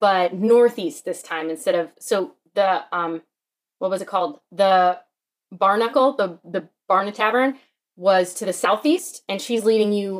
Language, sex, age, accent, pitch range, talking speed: English, female, 20-39, American, 180-235 Hz, 160 wpm